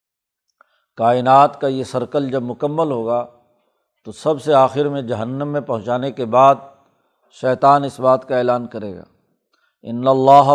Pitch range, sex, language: 125-145 Hz, male, Urdu